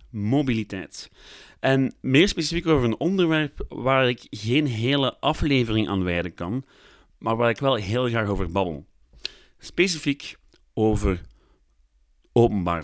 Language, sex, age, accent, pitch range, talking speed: Dutch, male, 30-49, Dutch, 95-140 Hz, 120 wpm